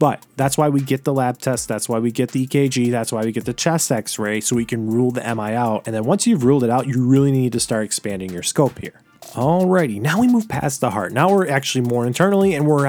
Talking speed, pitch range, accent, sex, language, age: 270 wpm, 120-155 Hz, American, male, English, 30-49